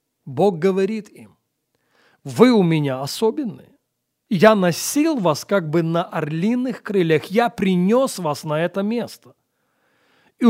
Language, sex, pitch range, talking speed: Russian, male, 160-220 Hz, 125 wpm